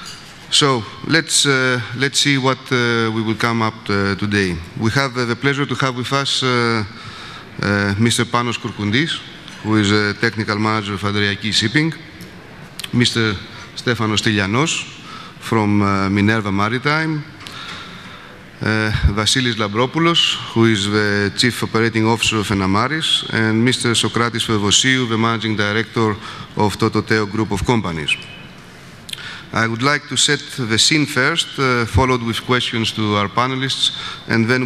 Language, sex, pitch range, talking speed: English, male, 110-130 Hz, 140 wpm